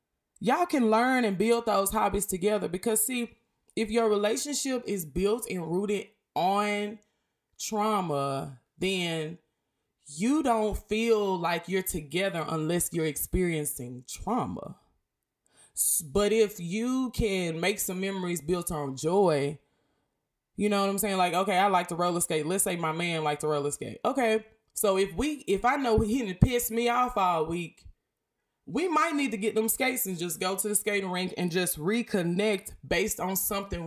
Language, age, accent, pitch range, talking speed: English, 20-39, American, 160-220 Hz, 165 wpm